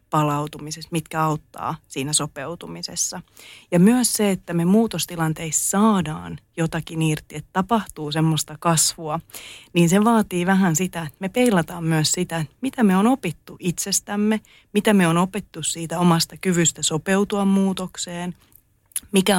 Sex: female